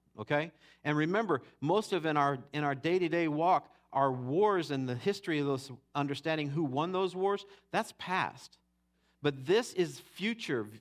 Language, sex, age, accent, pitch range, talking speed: English, male, 50-69, American, 105-145 Hz, 160 wpm